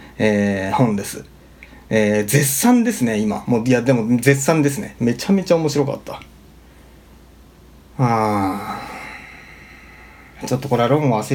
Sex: male